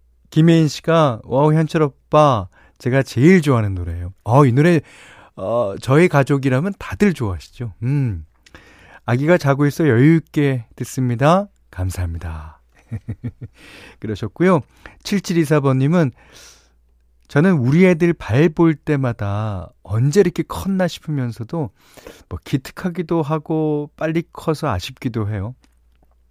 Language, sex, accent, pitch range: Korean, male, native, 95-155 Hz